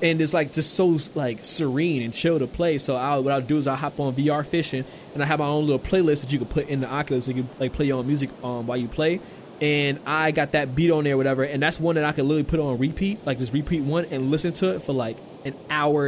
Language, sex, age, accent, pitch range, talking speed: English, male, 20-39, American, 130-155 Hz, 295 wpm